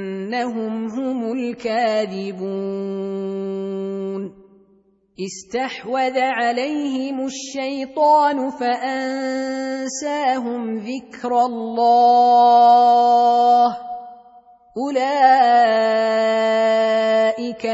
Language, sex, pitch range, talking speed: Arabic, female, 200-260 Hz, 35 wpm